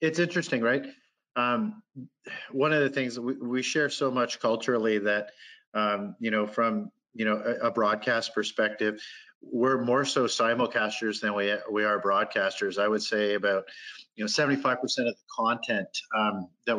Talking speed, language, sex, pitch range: 165 wpm, English, male, 105-120 Hz